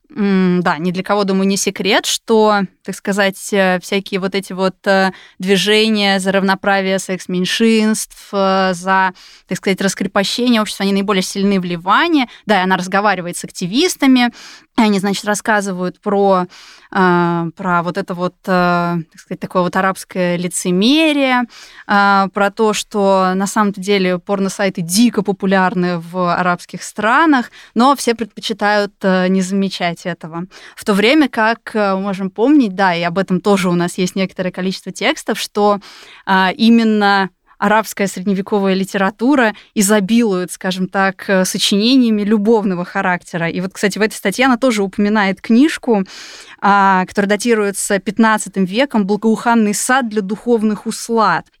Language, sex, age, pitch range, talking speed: Russian, female, 20-39, 185-215 Hz, 135 wpm